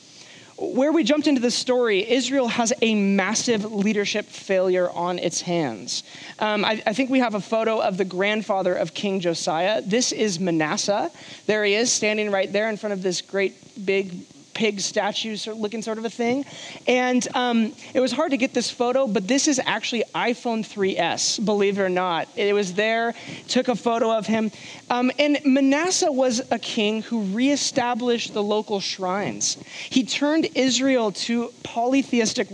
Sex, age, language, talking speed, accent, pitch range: male, 20-39, English, 175 wpm, American, 200-250 Hz